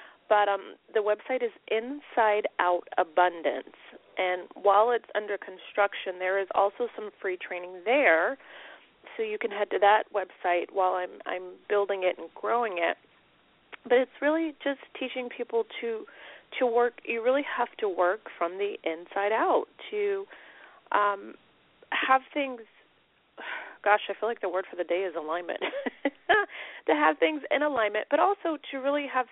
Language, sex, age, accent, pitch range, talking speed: English, female, 30-49, American, 185-265 Hz, 160 wpm